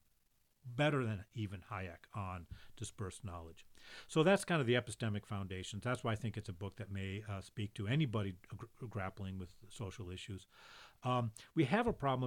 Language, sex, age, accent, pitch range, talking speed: English, male, 40-59, American, 100-135 Hz, 175 wpm